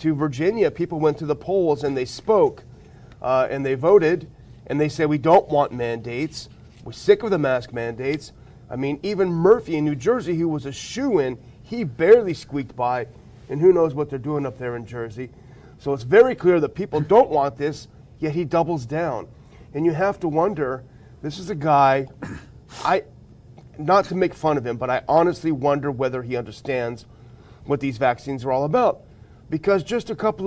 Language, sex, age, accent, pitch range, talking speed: English, male, 30-49, American, 130-170 Hz, 195 wpm